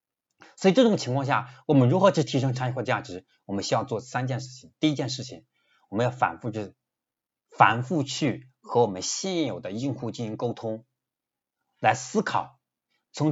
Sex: male